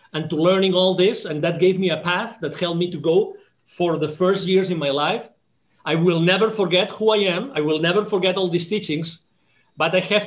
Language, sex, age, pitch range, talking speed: English, male, 40-59, 155-190 Hz, 235 wpm